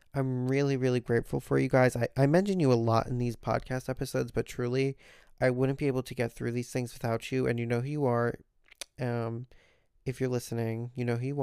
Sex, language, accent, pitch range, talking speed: male, English, American, 115-130 Hz, 230 wpm